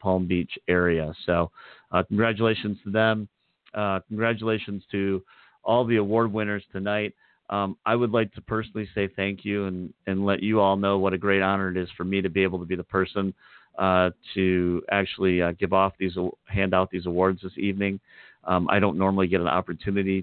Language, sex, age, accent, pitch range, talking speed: English, male, 40-59, American, 90-100 Hz, 200 wpm